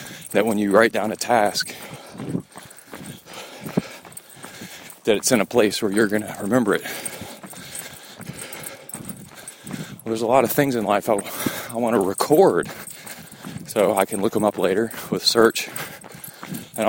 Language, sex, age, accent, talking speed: English, male, 40-59, American, 140 wpm